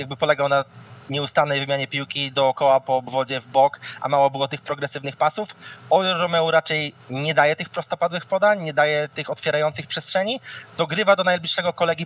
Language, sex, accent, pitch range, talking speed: Polish, male, native, 145-170 Hz, 165 wpm